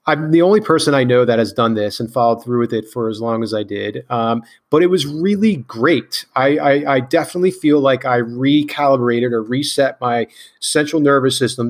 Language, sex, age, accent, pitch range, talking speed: English, male, 30-49, American, 120-140 Hz, 210 wpm